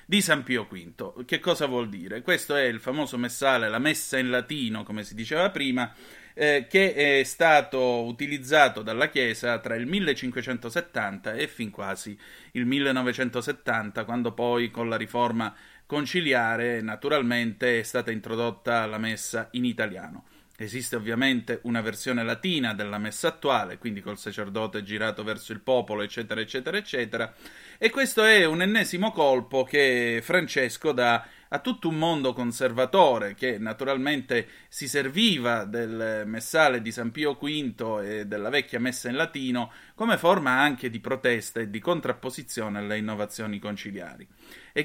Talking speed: 145 wpm